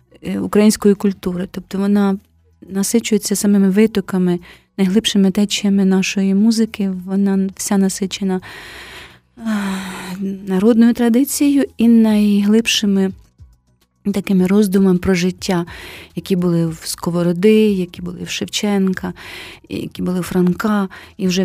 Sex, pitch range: female, 185-210 Hz